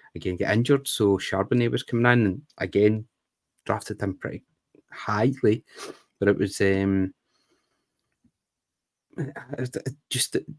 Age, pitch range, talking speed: 20-39, 100-120 Hz, 110 wpm